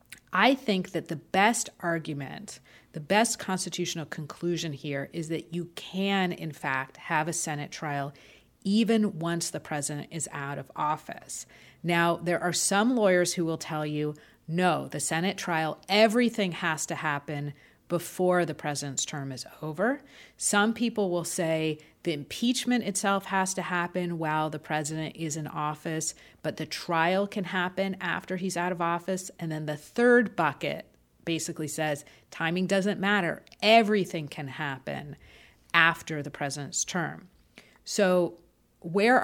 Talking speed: 150 wpm